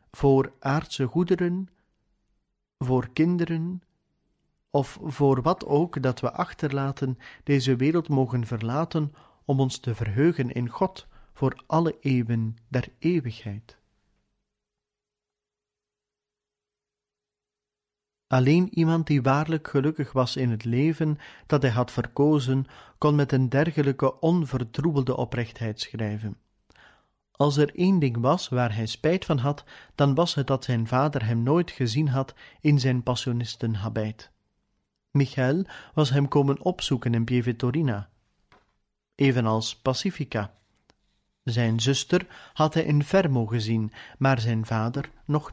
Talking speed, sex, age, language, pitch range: 120 wpm, male, 40-59, Dutch, 120-150 Hz